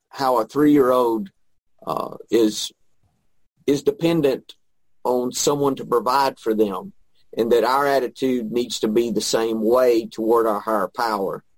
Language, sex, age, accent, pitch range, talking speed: English, male, 40-59, American, 110-140 Hz, 135 wpm